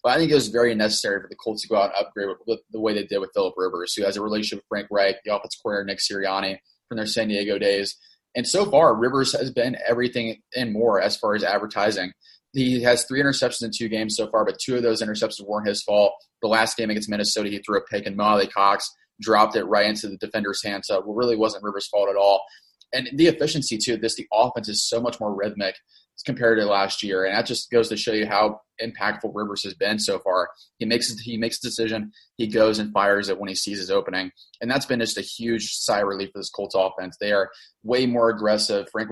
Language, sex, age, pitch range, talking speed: English, male, 20-39, 100-120 Hz, 250 wpm